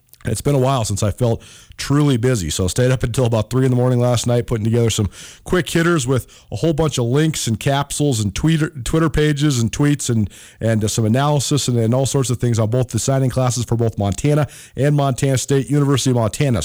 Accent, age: American, 40-59